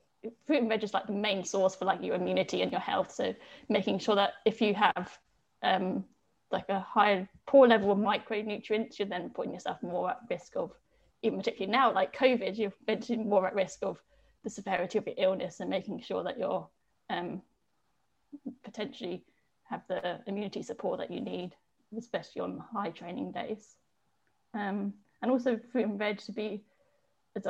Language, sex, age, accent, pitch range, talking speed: English, female, 10-29, British, 195-230 Hz, 180 wpm